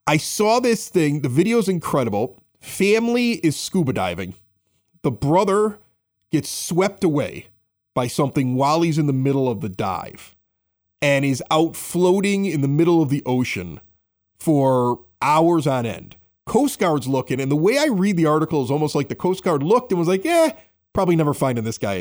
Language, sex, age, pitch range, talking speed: English, male, 40-59, 130-185 Hz, 185 wpm